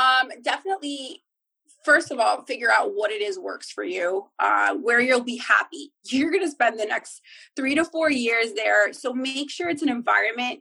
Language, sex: English, female